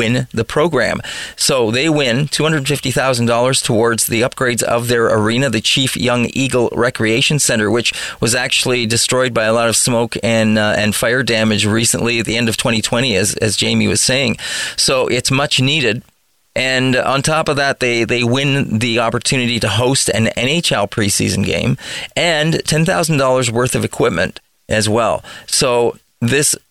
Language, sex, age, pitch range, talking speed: English, male, 30-49, 115-135 Hz, 165 wpm